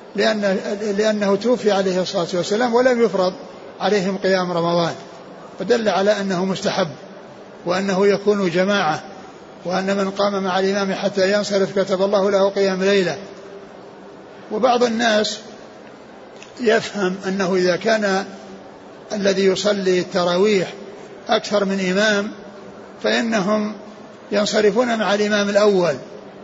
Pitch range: 195-215 Hz